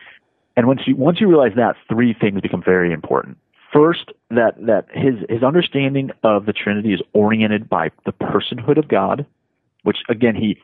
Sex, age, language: male, 30-49, English